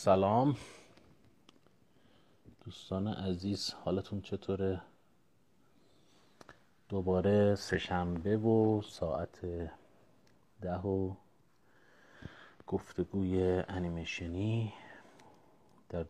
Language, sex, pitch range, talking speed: Persian, male, 85-95 Hz, 50 wpm